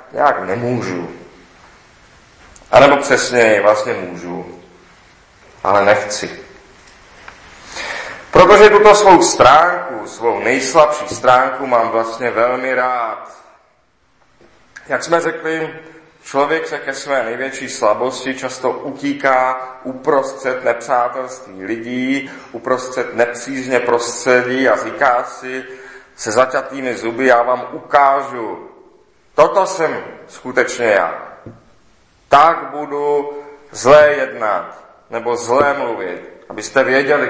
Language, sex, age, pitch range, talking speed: Czech, male, 40-59, 115-145 Hz, 95 wpm